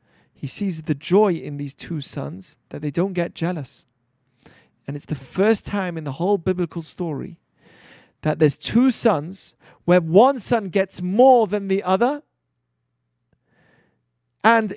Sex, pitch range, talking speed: male, 155-205 Hz, 145 wpm